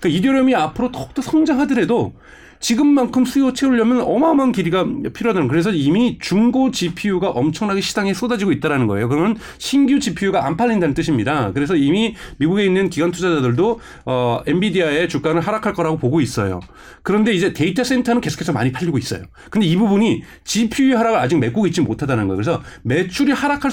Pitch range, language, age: 155-235 Hz, Korean, 40-59